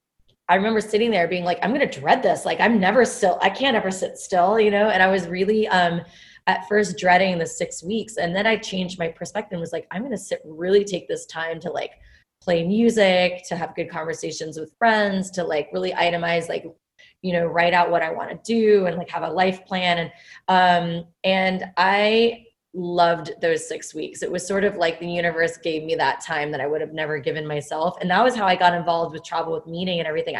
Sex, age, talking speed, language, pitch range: female, 20-39, 235 wpm, English, 170-215 Hz